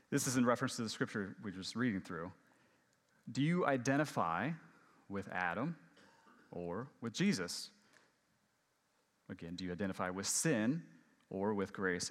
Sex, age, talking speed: male, 30-49, 145 wpm